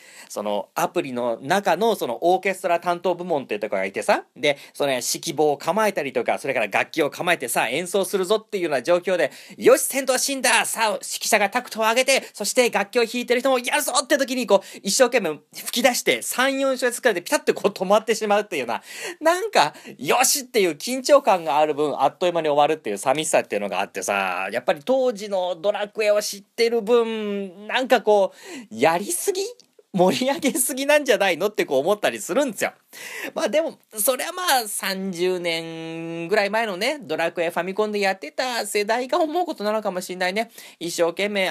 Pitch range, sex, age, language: 160-230 Hz, male, 40-59, Japanese